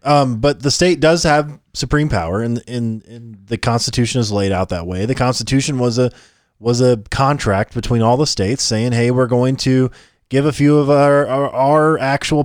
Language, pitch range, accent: English, 115-150 Hz, American